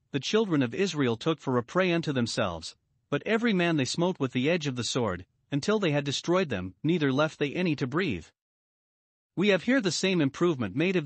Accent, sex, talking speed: American, male, 215 wpm